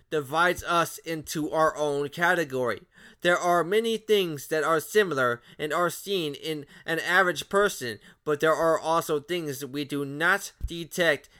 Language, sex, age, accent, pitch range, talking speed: English, male, 20-39, American, 150-180 Hz, 155 wpm